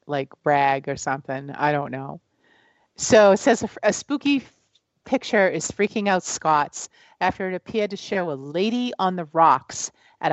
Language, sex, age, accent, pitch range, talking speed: English, female, 40-59, American, 170-230 Hz, 165 wpm